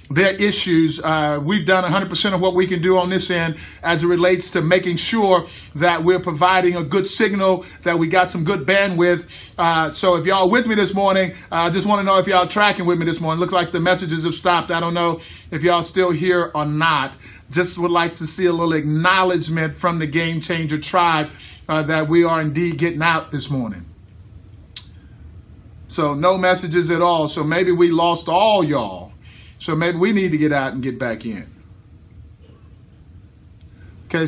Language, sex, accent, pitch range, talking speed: English, male, American, 135-190 Hz, 195 wpm